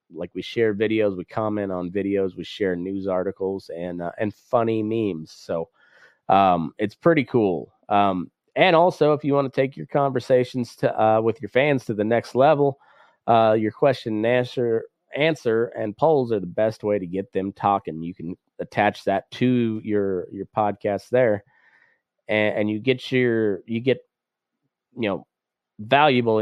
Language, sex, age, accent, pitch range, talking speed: English, male, 30-49, American, 100-125 Hz, 175 wpm